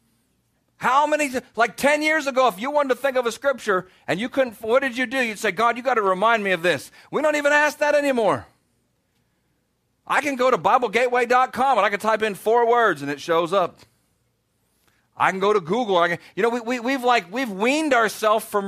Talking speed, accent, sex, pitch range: 210 wpm, American, male, 175-250 Hz